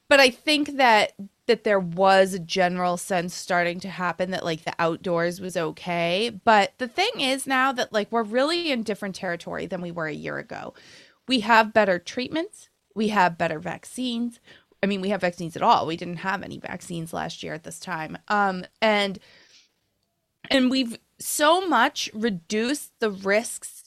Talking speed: 180 wpm